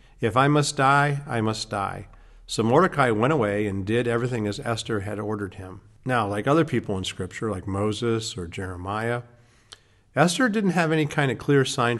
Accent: American